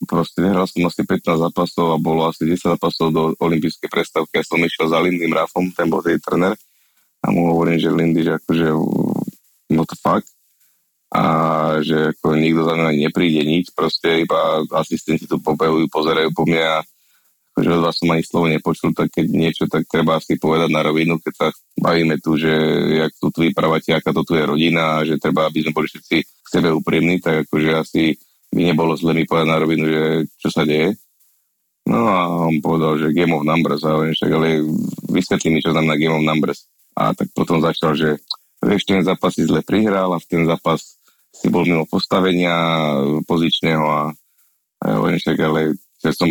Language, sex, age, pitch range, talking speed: Slovak, male, 20-39, 80-85 Hz, 190 wpm